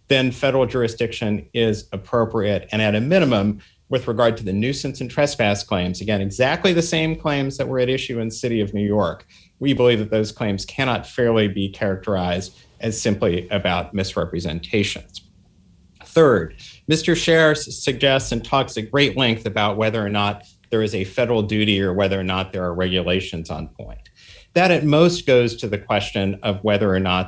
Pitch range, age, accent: 95-125 Hz, 50-69, American